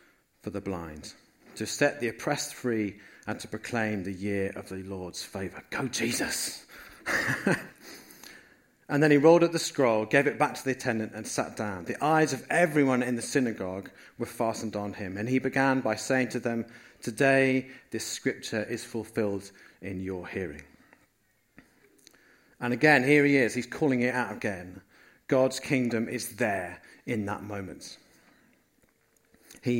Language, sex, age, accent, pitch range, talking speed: English, male, 40-59, British, 105-130 Hz, 160 wpm